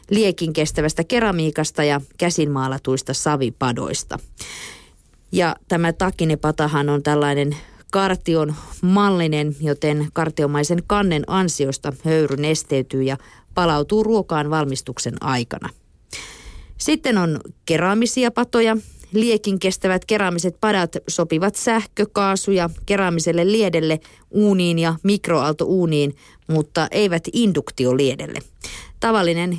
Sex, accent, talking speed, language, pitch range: female, native, 85 wpm, Finnish, 145-185 Hz